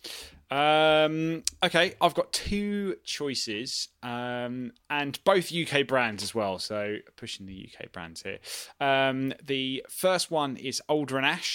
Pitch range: 105-140 Hz